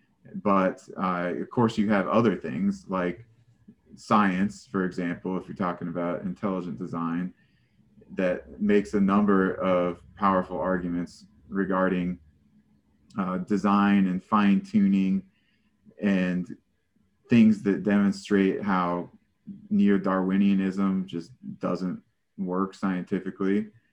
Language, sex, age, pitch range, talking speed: English, male, 30-49, 90-105 Hz, 105 wpm